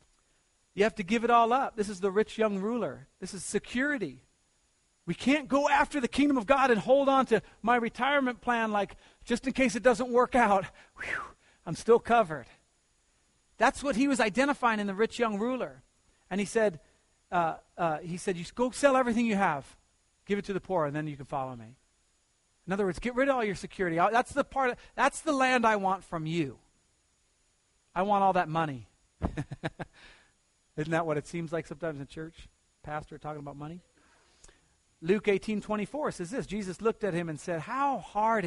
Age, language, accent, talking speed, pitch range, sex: 40-59, English, American, 195 wpm, 140-220 Hz, male